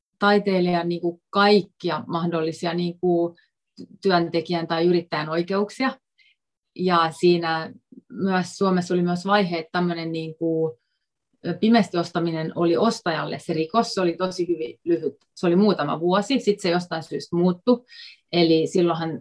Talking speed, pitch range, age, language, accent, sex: 125 wpm, 170-195 Hz, 30-49, Finnish, native, female